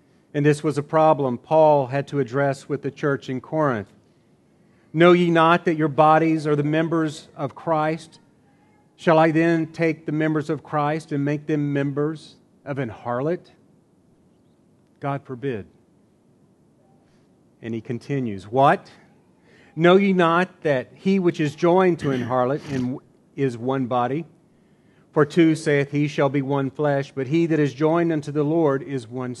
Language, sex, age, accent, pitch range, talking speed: English, male, 40-59, American, 135-165 Hz, 160 wpm